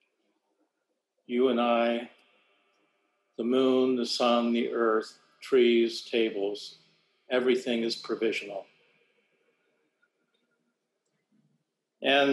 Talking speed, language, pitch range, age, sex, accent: 75 wpm, English, 130-150 Hz, 60-79, male, American